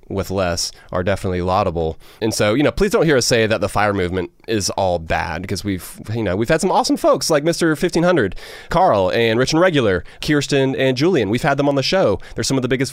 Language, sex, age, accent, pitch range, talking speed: English, male, 30-49, American, 95-120 Hz, 240 wpm